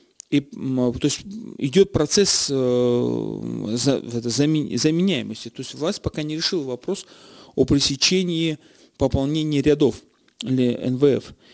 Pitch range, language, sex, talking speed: 135-185 Hz, Russian, male, 115 wpm